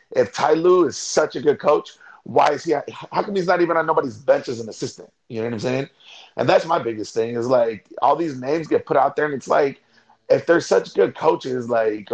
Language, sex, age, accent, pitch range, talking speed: English, male, 30-49, American, 115-160 Hz, 245 wpm